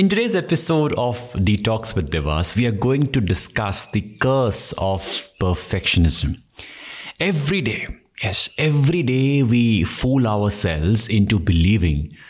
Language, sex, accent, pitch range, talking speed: English, male, Indian, 95-135 Hz, 125 wpm